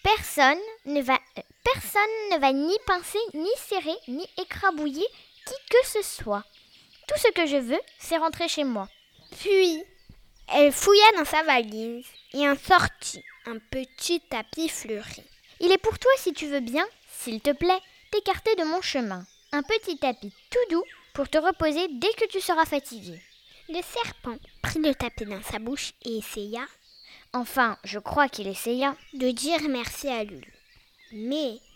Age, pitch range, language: 10-29, 230-360 Hz, French